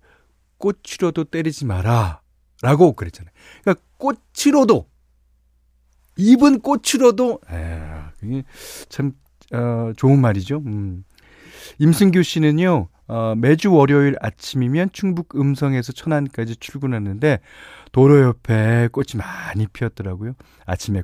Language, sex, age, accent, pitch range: Korean, male, 40-59, native, 95-150 Hz